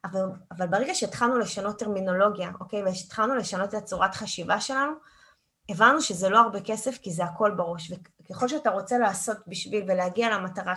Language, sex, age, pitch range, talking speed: Hebrew, female, 20-39, 185-250 Hz, 160 wpm